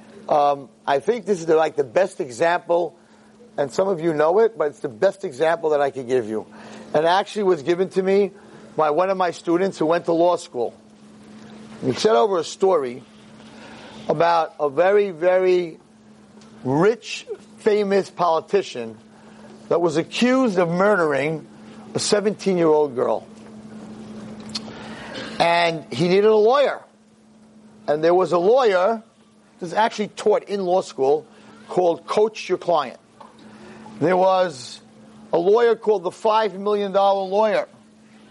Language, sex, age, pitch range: English, male, 50-69, 175-220 Hz